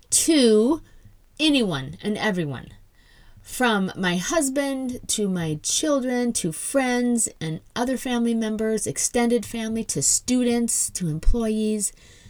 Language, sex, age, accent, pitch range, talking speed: English, female, 40-59, American, 180-235 Hz, 105 wpm